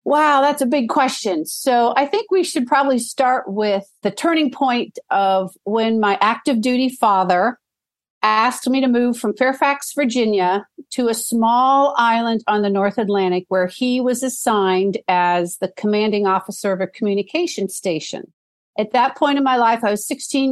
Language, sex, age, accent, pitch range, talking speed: English, female, 50-69, American, 200-260 Hz, 170 wpm